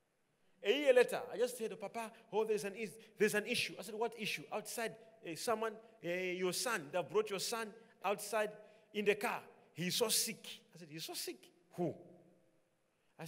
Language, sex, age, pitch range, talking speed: English, male, 40-59, 170-230 Hz, 195 wpm